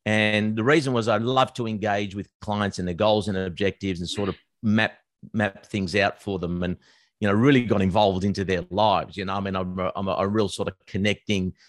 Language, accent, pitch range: English, Australian, 100-120 Hz